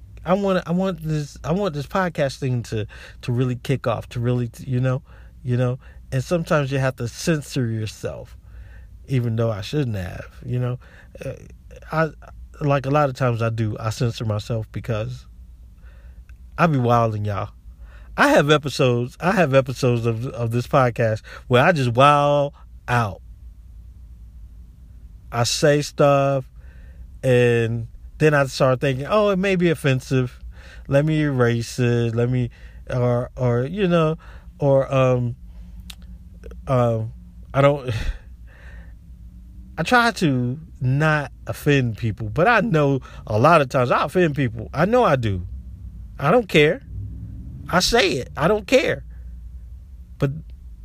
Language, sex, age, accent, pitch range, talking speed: English, male, 50-69, American, 95-140 Hz, 150 wpm